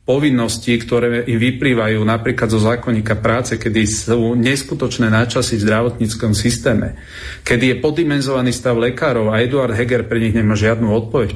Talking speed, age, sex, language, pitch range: 145 wpm, 40-59, male, Slovak, 105-125 Hz